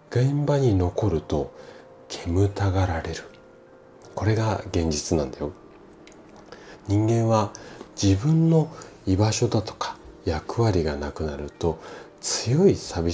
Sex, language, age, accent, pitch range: male, Japanese, 40-59, native, 75-120 Hz